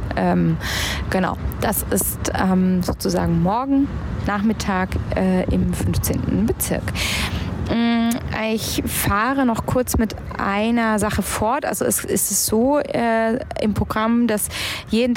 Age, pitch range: 20-39, 190-235 Hz